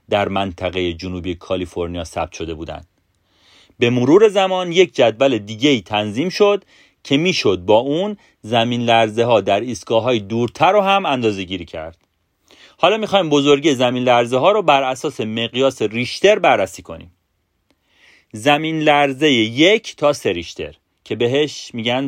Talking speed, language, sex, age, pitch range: 140 wpm, Persian, male, 40-59, 105-165 Hz